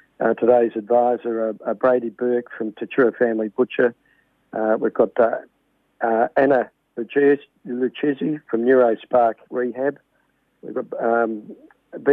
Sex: male